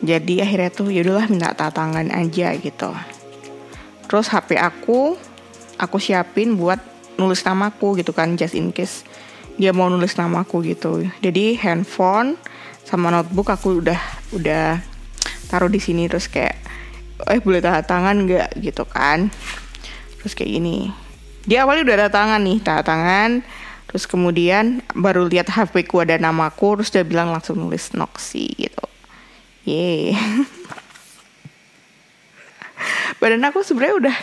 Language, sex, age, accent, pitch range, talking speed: Indonesian, female, 20-39, native, 170-215 Hz, 135 wpm